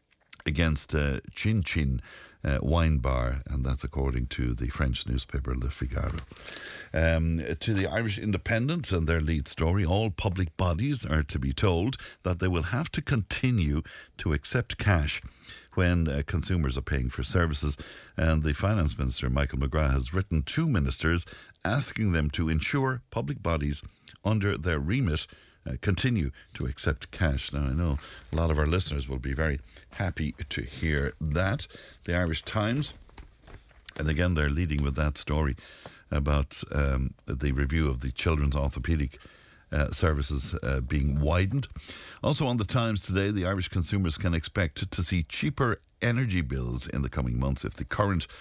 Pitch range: 70-95 Hz